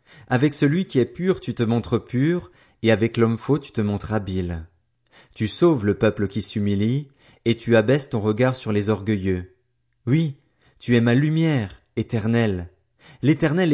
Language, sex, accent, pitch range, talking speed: French, male, French, 110-145 Hz, 165 wpm